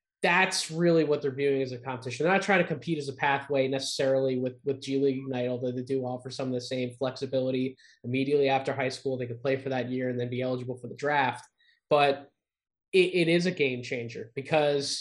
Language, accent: English, American